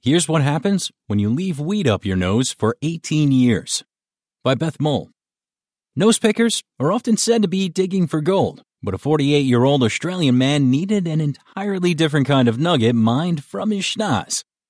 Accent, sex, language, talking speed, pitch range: American, male, English, 170 wpm, 120-165 Hz